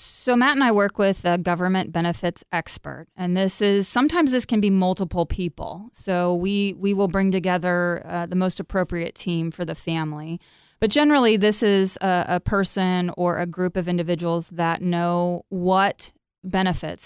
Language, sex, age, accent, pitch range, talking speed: English, female, 20-39, American, 170-195 Hz, 170 wpm